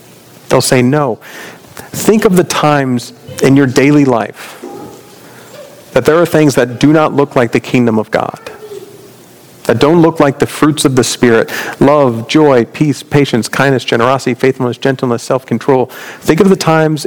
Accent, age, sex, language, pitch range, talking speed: American, 40-59, male, English, 120-150 Hz, 165 wpm